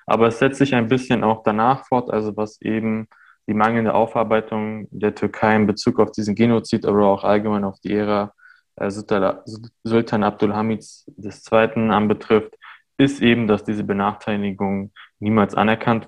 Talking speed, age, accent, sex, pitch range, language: 150 wpm, 20-39, German, male, 100-110 Hz, German